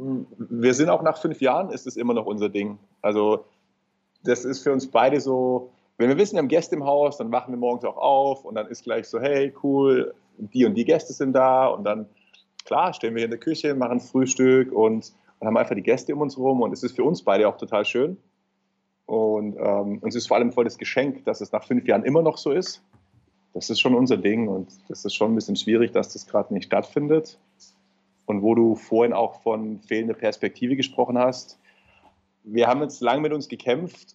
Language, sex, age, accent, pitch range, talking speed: German, male, 30-49, German, 110-135 Hz, 225 wpm